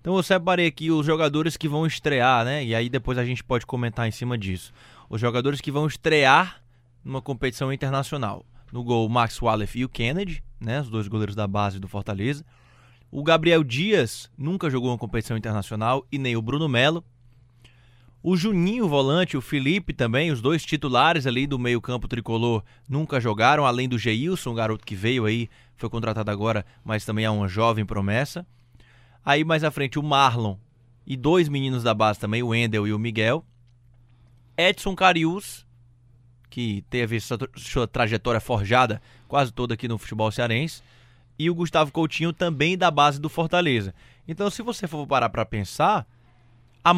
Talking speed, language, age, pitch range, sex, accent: 175 wpm, Portuguese, 20-39, 115-150 Hz, male, Brazilian